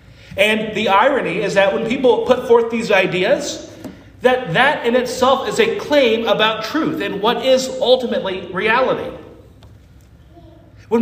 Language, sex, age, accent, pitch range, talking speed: English, male, 40-59, American, 145-240 Hz, 140 wpm